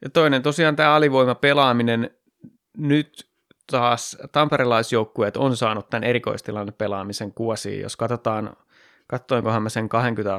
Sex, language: male, Finnish